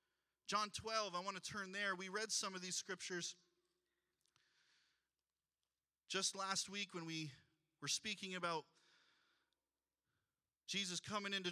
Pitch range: 165-220 Hz